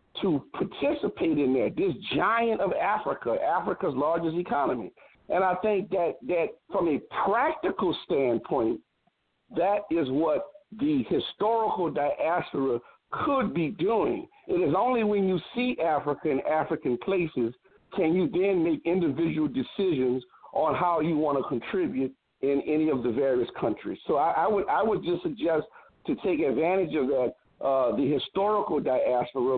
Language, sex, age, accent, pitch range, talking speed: English, male, 50-69, American, 150-230 Hz, 150 wpm